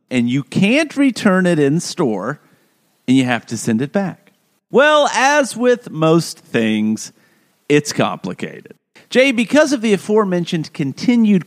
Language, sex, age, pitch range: English, male, 40-59, 135-220 Hz